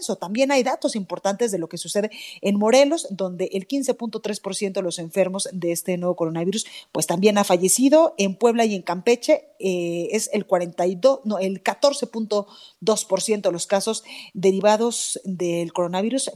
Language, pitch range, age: Spanish, 190-255 Hz, 40-59